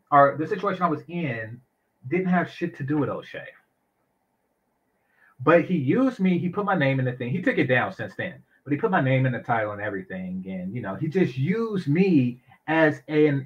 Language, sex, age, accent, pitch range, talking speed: English, male, 30-49, American, 125-170 Hz, 220 wpm